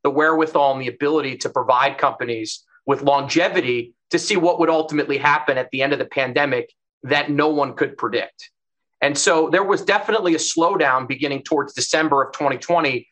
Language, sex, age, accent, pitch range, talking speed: English, male, 30-49, American, 130-160 Hz, 180 wpm